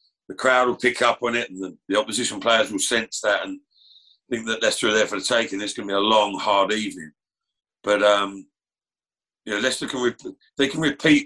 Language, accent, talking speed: English, British, 230 wpm